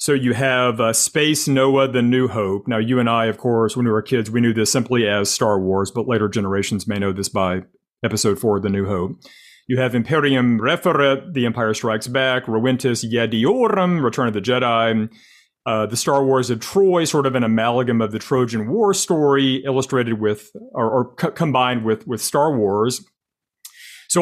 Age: 40-59